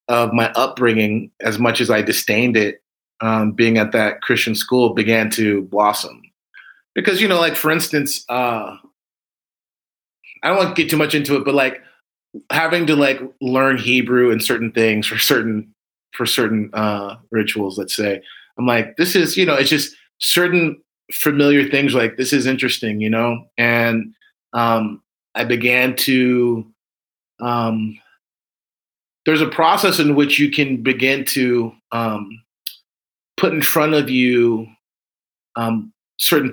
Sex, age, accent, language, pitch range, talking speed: male, 30-49, American, English, 110-130 Hz, 150 wpm